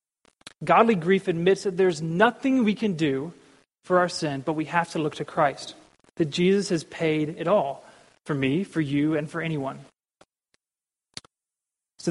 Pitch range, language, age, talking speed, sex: 160-200 Hz, English, 30-49, 165 wpm, male